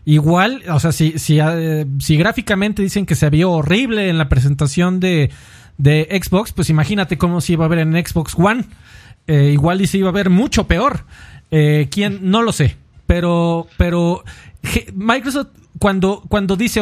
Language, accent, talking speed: Spanish, Mexican, 170 wpm